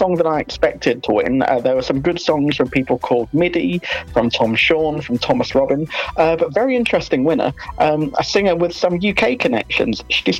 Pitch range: 130-180 Hz